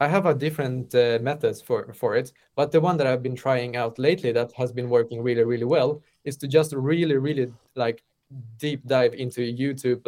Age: 20-39